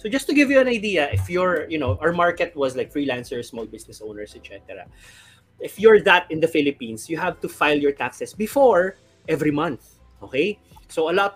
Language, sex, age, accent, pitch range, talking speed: Filipino, male, 20-39, native, 135-190 Hz, 205 wpm